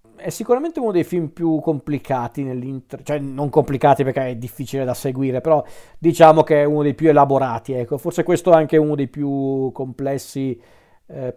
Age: 40-59